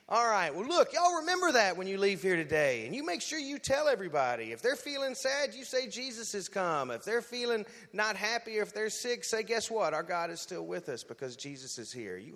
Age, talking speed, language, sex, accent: 30-49, 250 wpm, English, male, American